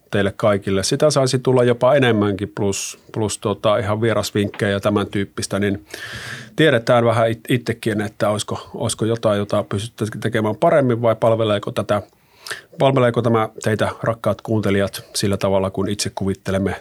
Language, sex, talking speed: Finnish, male, 145 wpm